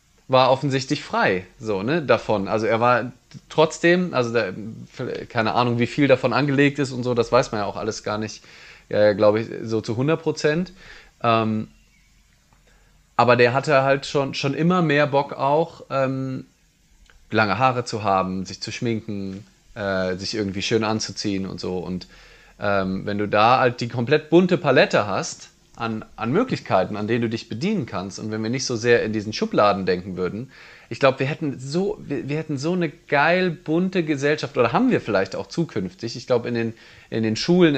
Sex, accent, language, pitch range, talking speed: male, German, German, 110-150 Hz, 185 wpm